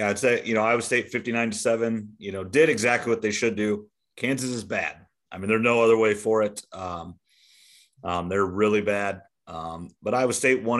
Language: English